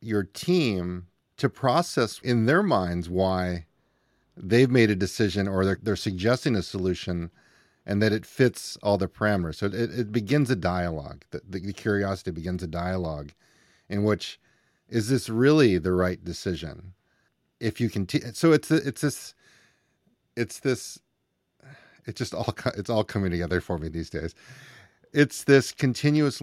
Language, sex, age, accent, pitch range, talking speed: English, male, 40-59, American, 95-125 Hz, 160 wpm